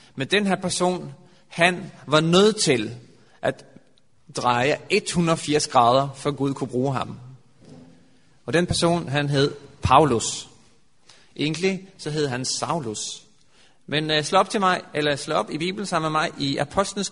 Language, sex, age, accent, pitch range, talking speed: Danish, male, 30-49, native, 140-185 Hz, 150 wpm